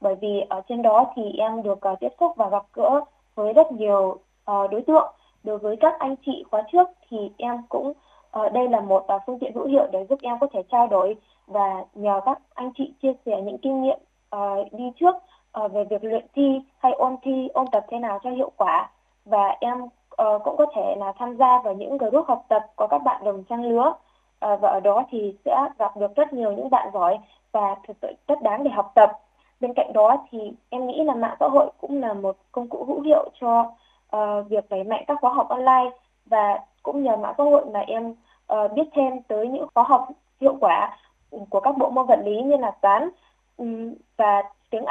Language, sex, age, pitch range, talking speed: Vietnamese, female, 20-39, 210-275 Hz, 215 wpm